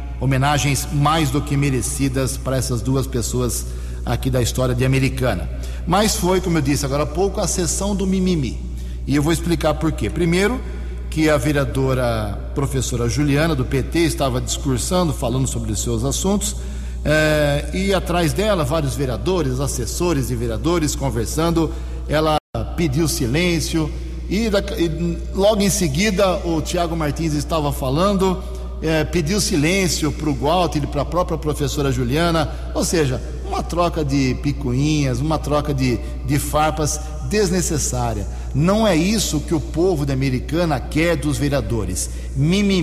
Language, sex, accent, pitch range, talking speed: Portuguese, male, Brazilian, 125-170 Hz, 145 wpm